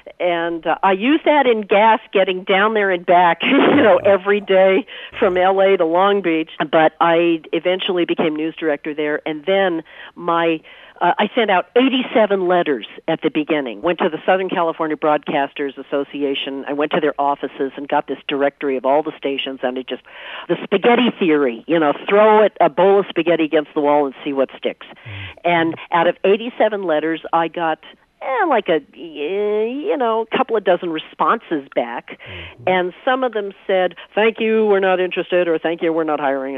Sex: female